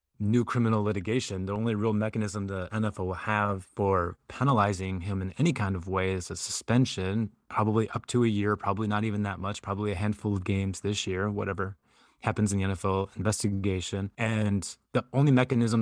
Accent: American